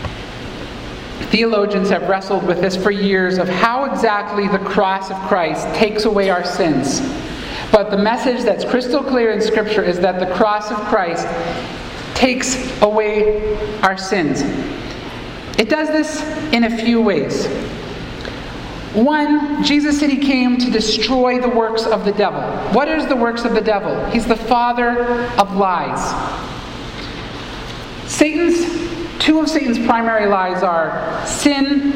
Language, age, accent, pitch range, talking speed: English, 50-69, American, 200-250 Hz, 140 wpm